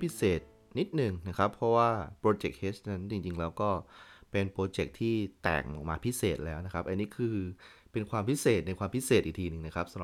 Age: 30-49